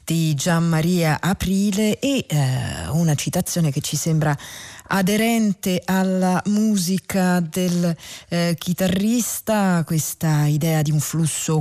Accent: native